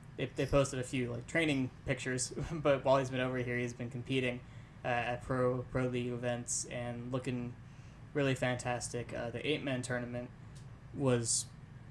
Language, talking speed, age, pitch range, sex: English, 155 wpm, 10-29, 125-140 Hz, male